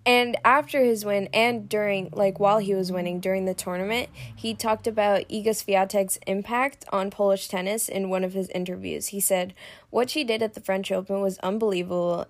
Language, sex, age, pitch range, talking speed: English, female, 10-29, 185-215 Hz, 190 wpm